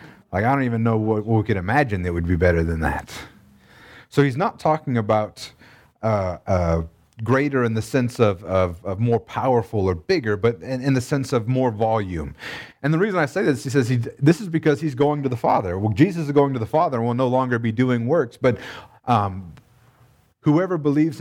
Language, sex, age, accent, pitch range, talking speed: English, male, 30-49, American, 110-140 Hz, 210 wpm